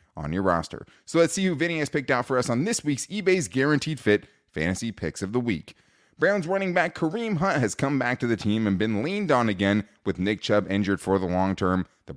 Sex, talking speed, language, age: male, 240 wpm, English, 20-39